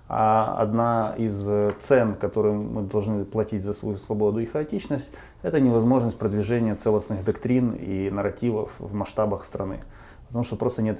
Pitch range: 100-120 Hz